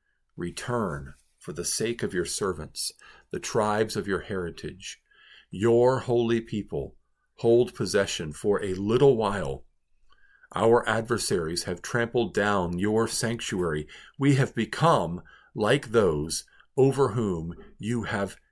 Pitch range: 80-130 Hz